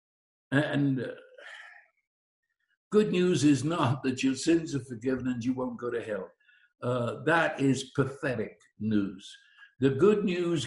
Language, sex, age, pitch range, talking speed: English, male, 60-79, 145-235 Hz, 140 wpm